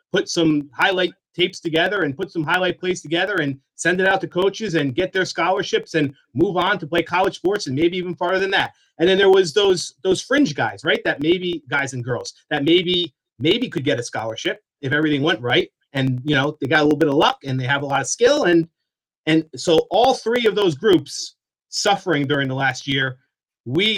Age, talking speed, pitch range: 30-49, 225 wpm, 140-180 Hz